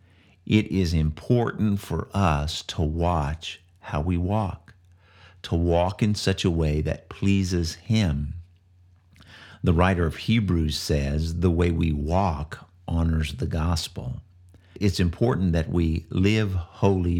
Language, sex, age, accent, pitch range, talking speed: English, male, 50-69, American, 85-100 Hz, 130 wpm